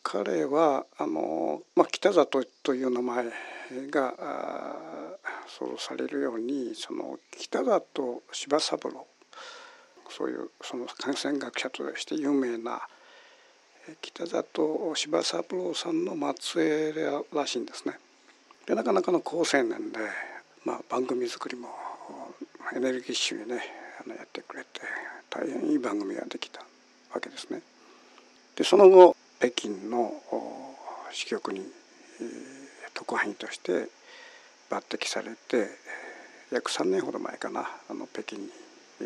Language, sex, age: Japanese, male, 60-79